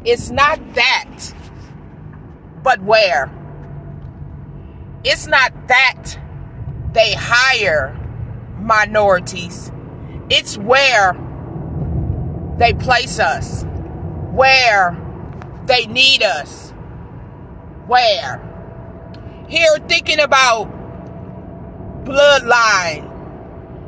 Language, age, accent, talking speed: English, 40-59, American, 65 wpm